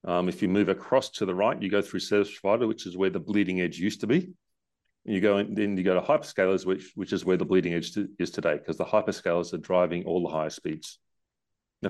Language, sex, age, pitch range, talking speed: English, male, 40-59, 90-105 Hz, 255 wpm